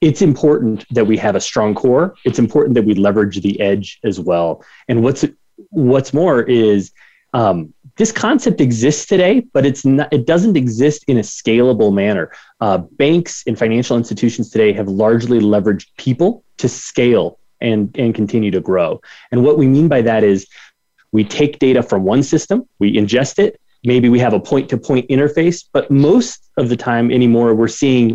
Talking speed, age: 185 wpm, 30-49